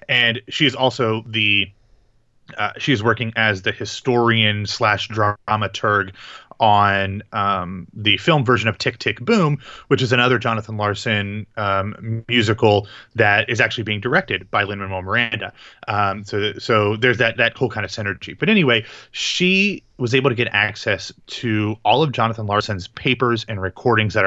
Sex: male